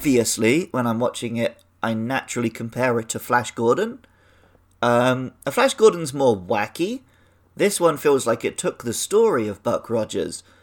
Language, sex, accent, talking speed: English, male, British, 160 wpm